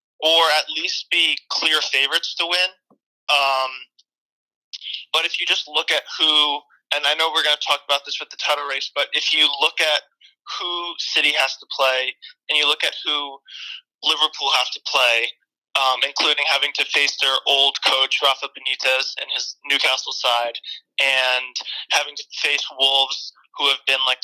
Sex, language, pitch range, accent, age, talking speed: male, English, 130-145 Hz, American, 20-39, 175 wpm